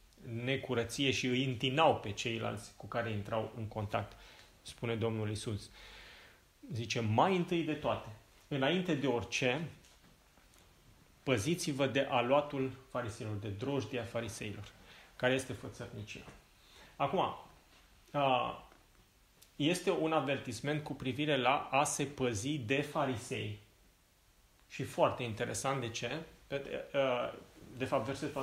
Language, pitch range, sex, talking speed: Romanian, 115-145 Hz, male, 110 wpm